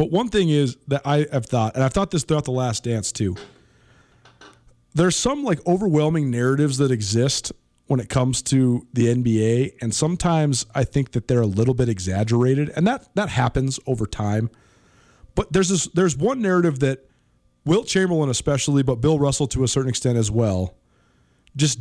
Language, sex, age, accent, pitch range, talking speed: English, male, 30-49, American, 125-175 Hz, 180 wpm